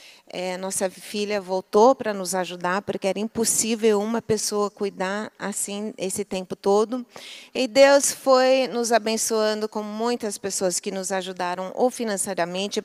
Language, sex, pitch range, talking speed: Portuguese, female, 190-225 Hz, 135 wpm